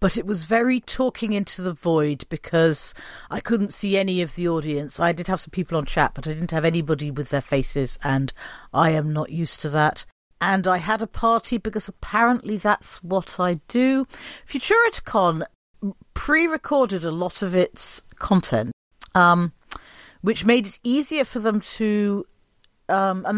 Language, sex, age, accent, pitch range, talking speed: English, female, 40-59, British, 170-230 Hz, 170 wpm